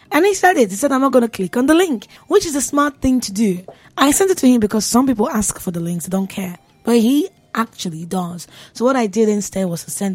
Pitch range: 185-255 Hz